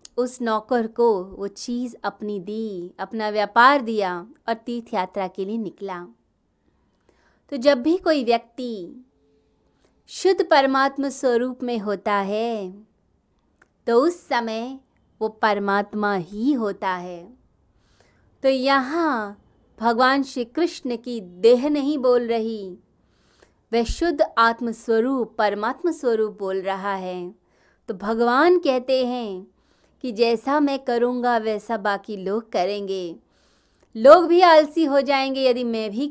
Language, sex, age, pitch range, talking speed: Hindi, female, 20-39, 200-255 Hz, 125 wpm